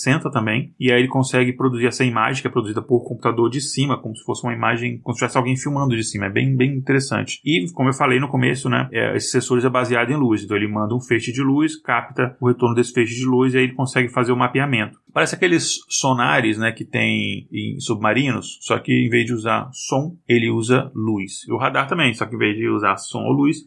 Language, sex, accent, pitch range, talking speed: Portuguese, male, Brazilian, 115-130 Hz, 250 wpm